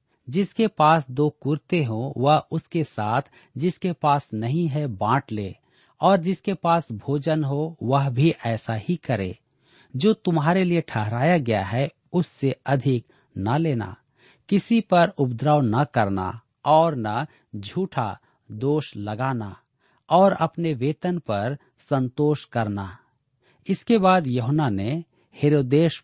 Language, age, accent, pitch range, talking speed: Hindi, 50-69, native, 120-160 Hz, 125 wpm